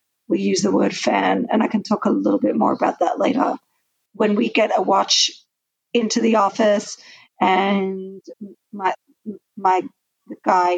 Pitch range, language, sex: 195-235 Hz, English, female